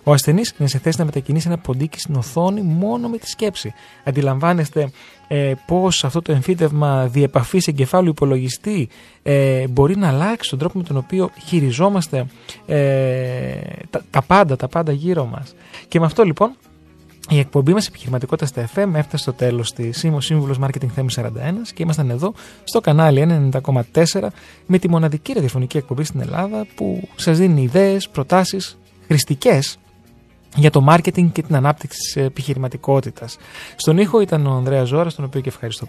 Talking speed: 165 wpm